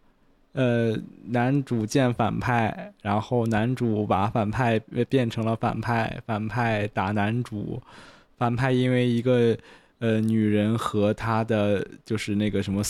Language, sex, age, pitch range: Chinese, male, 20-39, 105-120 Hz